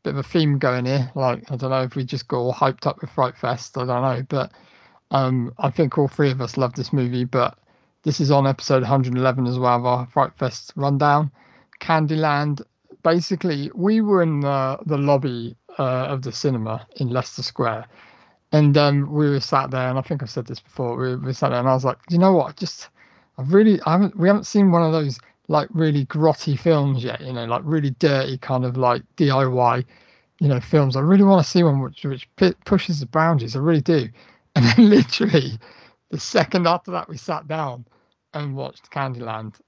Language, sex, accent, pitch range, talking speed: English, male, British, 125-155 Hz, 215 wpm